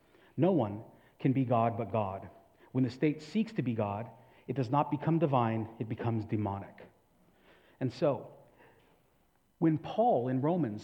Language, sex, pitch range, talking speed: English, male, 125-175 Hz, 155 wpm